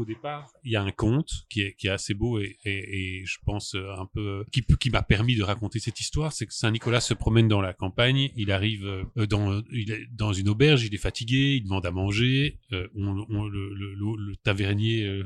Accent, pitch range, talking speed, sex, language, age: French, 100-120 Hz, 230 wpm, male, French, 30-49